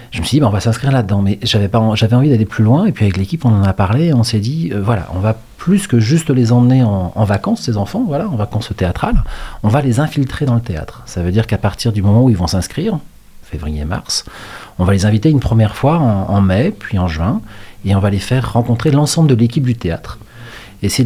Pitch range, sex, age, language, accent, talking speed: 95-125 Hz, male, 40-59, French, French, 255 wpm